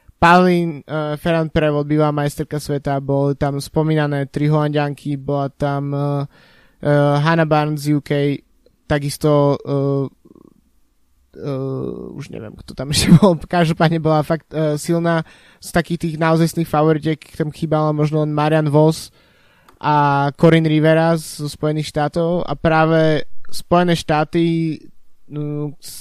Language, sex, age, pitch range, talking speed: Slovak, male, 20-39, 140-155 Hz, 130 wpm